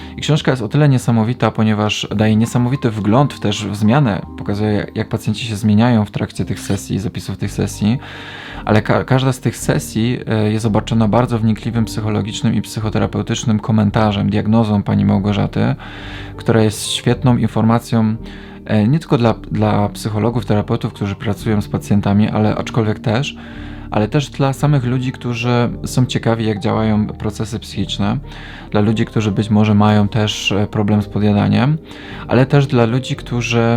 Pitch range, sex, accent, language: 105-115 Hz, male, native, Polish